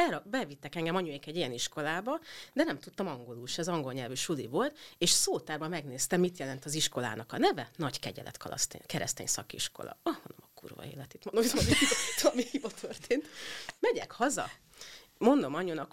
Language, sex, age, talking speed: Hungarian, female, 30-49, 175 wpm